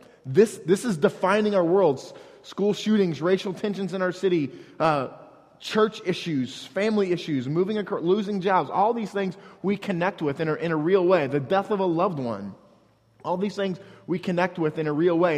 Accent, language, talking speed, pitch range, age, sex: American, English, 195 wpm, 145-190 Hz, 30-49, male